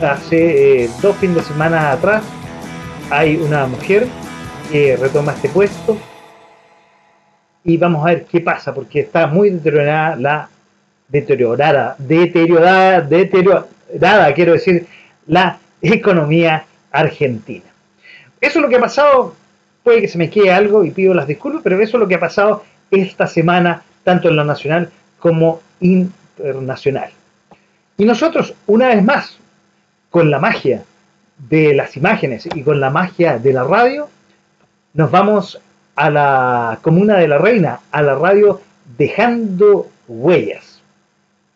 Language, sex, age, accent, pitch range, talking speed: Spanish, male, 40-59, Argentinian, 155-200 Hz, 135 wpm